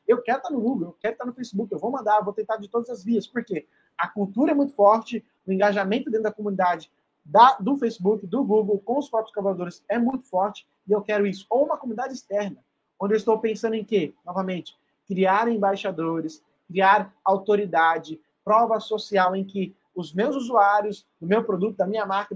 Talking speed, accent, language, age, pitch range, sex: 200 wpm, Brazilian, Portuguese, 30-49, 190-230 Hz, male